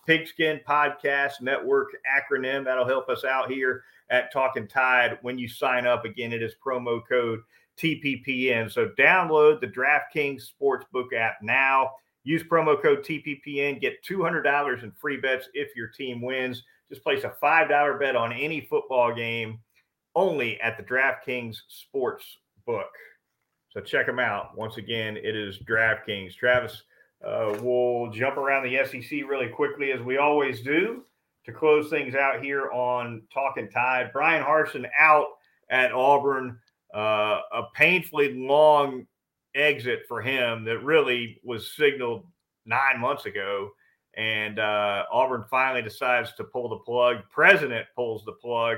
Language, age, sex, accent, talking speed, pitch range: English, 40-59, male, American, 145 wpm, 120-145 Hz